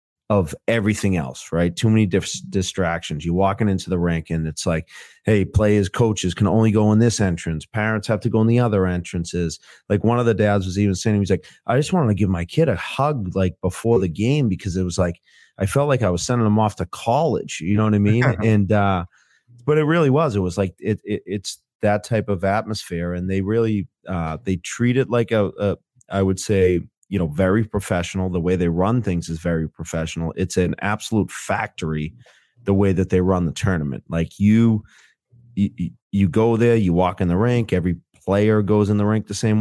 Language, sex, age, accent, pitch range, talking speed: English, male, 30-49, American, 90-110 Hz, 225 wpm